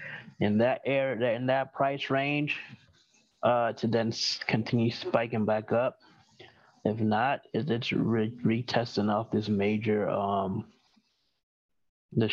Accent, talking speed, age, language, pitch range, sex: American, 115 wpm, 20-39, English, 105-125 Hz, male